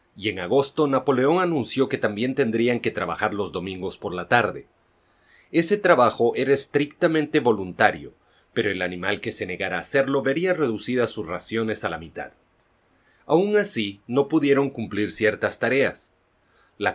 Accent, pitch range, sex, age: Mexican, 105-145 Hz, male, 40-59